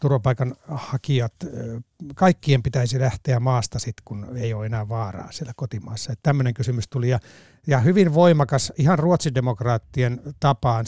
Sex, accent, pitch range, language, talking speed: male, native, 115-140 Hz, Finnish, 120 wpm